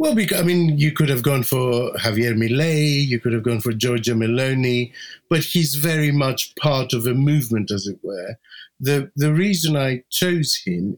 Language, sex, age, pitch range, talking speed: English, male, 50-69, 120-150 Hz, 190 wpm